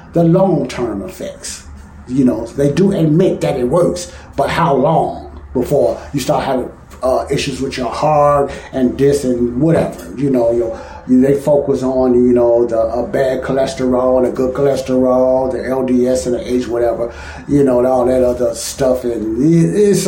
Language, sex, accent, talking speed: English, male, American, 175 wpm